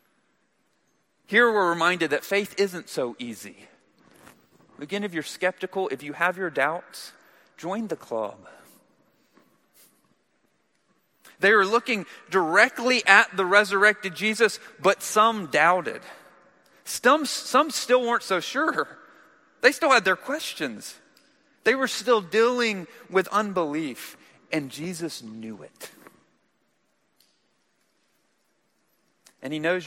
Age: 40-59